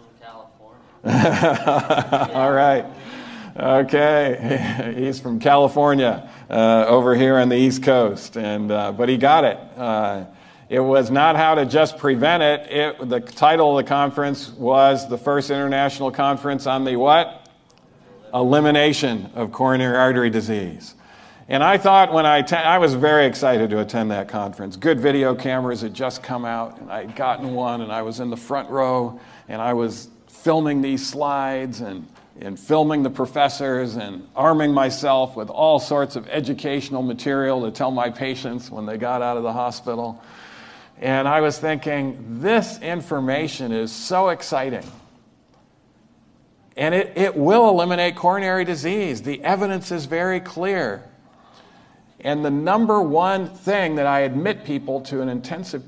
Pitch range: 125-150 Hz